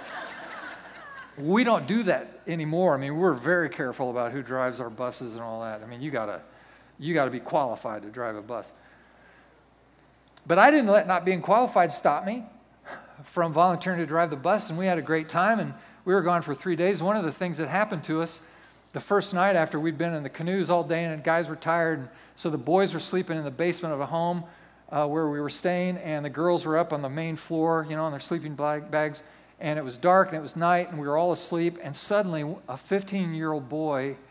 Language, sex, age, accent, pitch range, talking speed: English, male, 40-59, American, 155-200 Hz, 235 wpm